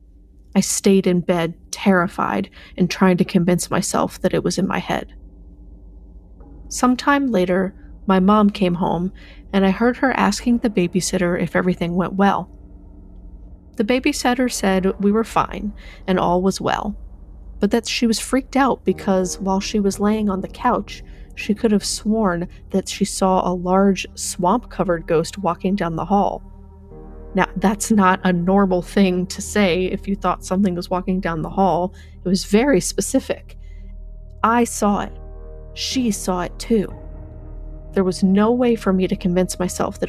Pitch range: 130-205 Hz